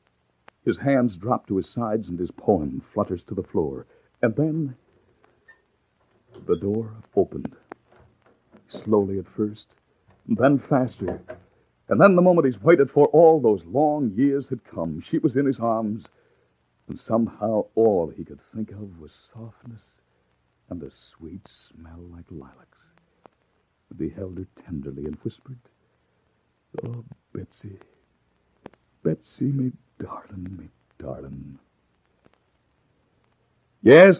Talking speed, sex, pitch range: 125 wpm, male, 90-135 Hz